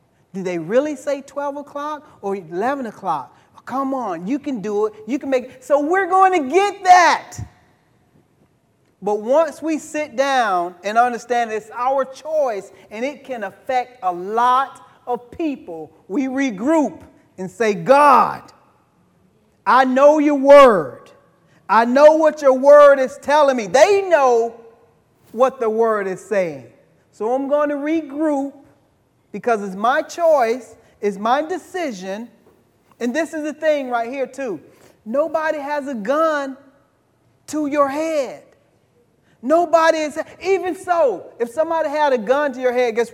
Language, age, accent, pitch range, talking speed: English, 40-59, American, 225-300 Hz, 145 wpm